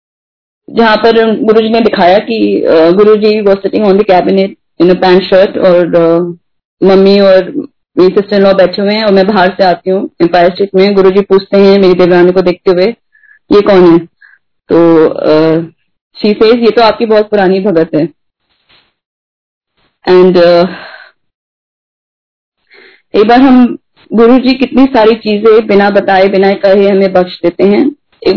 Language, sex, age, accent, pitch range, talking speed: Hindi, female, 20-39, native, 190-230 Hz, 155 wpm